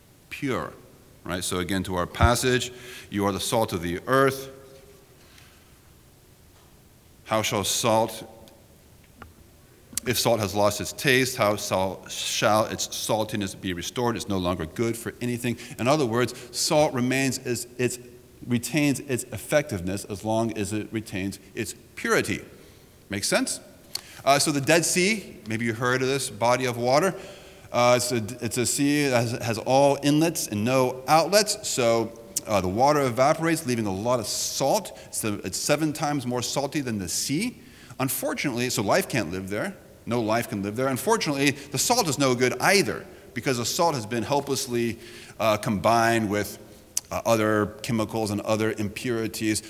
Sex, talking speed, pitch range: male, 160 wpm, 105-130 Hz